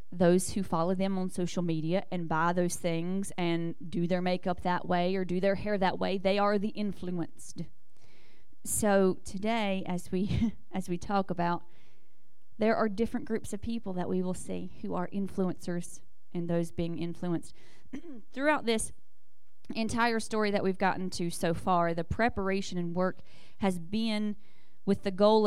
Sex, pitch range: female, 175-215 Hz